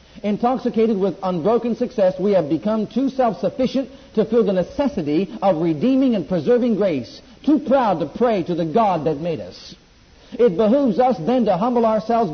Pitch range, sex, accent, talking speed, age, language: 185-245 Hz, male, American, 170 wpm, 50-69, English